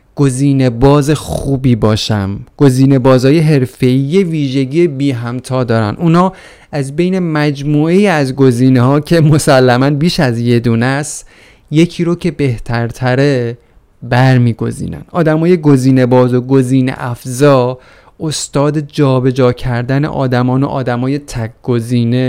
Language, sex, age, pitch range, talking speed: Persian, male, 30-49, 120-150 Hz, 120 wpm